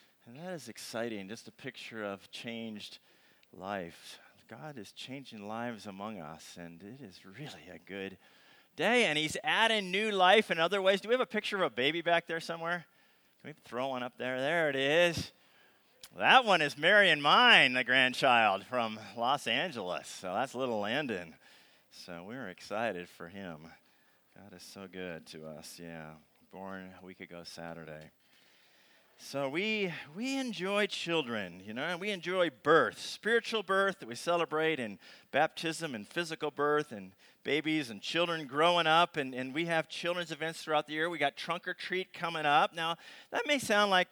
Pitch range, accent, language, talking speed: 115-180 Hz, American, English, 180 wpm